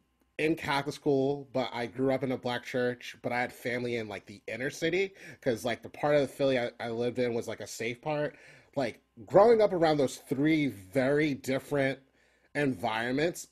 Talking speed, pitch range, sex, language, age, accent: 200 wpm, 110-135 Hz, male, English, 30-49, American